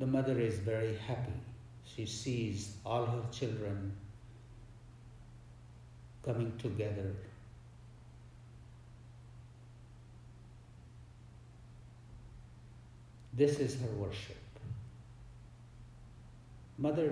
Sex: male